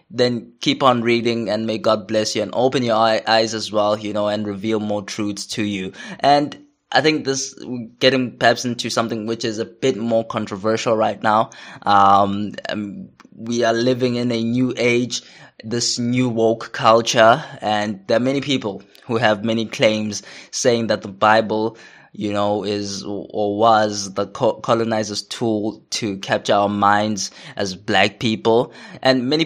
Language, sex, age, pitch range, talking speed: English, male, 20-39, 105-115 Hz, 165 wpm